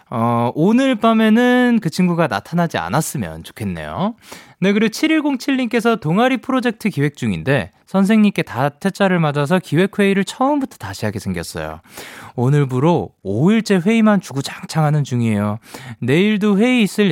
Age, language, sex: 20-39, Korean, male